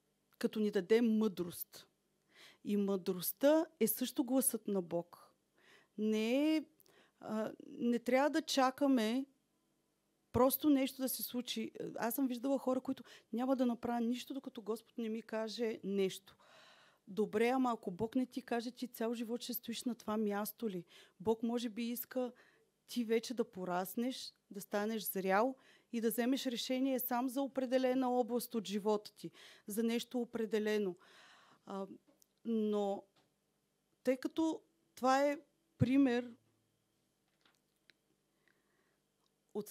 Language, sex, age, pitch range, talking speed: Bulgarian, female, 30-49, 215-260 Hz, 130 wpm